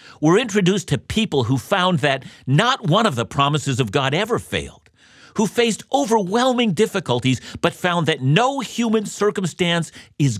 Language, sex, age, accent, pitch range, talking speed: English, male, 50-69, American, 120-185 Hz, 155 wpm